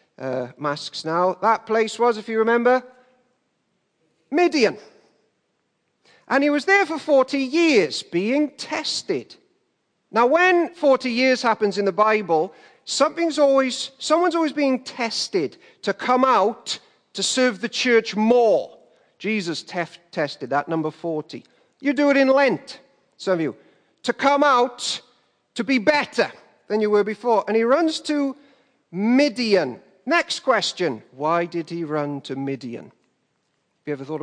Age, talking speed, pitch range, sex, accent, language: 40-59, 145 wpm, 175-275 Hz, male, British, English